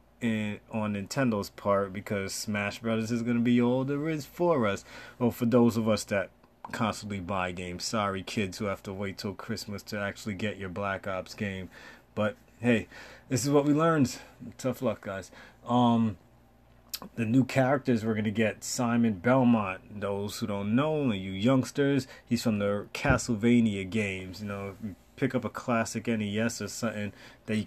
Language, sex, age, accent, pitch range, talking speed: English, male, 30-49, American, 105-130 Hz, 185 wpm